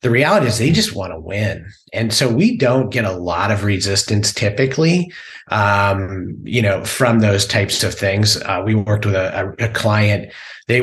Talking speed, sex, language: 190 wpm, male, English